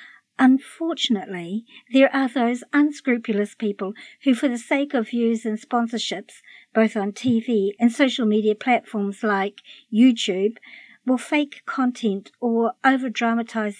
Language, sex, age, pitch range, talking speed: English, male, 50-69, 215-255 Hz, 120 wpm